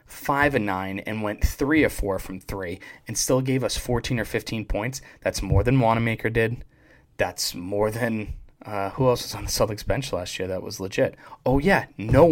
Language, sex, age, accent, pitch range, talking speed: English, male, 20-39, American, 100-125 Hz, 205 wpm